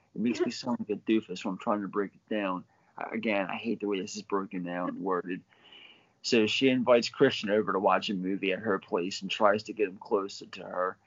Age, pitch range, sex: 30-49, 100-120 Hz, male